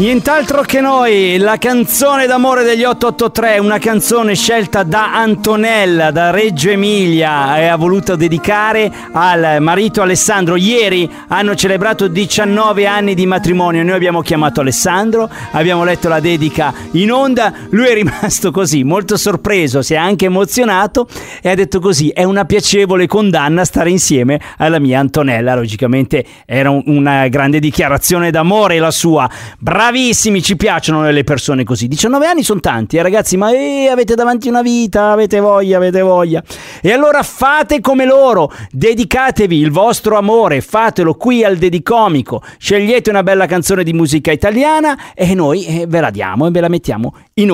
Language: Italian